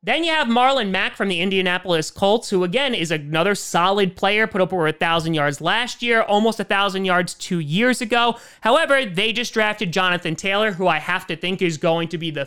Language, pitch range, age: English, 170-220 Hz, 30-49